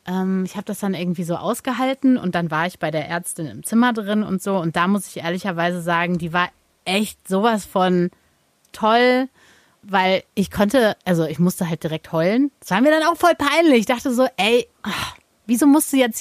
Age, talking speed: 30-49, 205 wpm